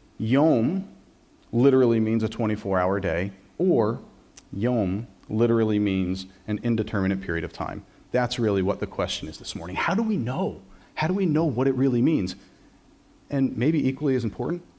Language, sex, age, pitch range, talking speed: English, male, 40-59, 110-155 Hz, 160 wpm